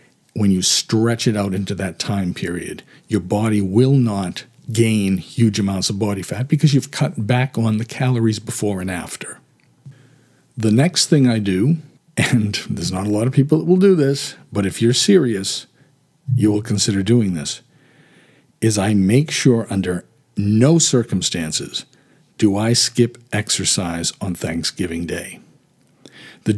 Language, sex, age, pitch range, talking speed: English, male, 50-69, 100-130 Hz, 155 wpm